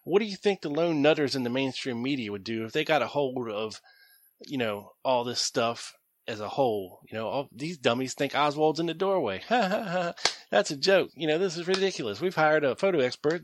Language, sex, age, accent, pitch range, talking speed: English, male, 30-49, American, 130-180 Hz, 225 wpm